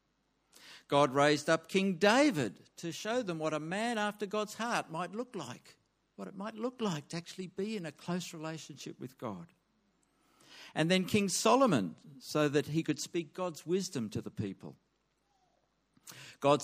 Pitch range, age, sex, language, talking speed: 145-200 Hz, 50-69, male, English, 165 wpm